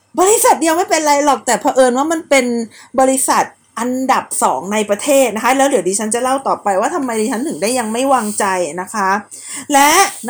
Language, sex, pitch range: Thai, female, 215-280 Hz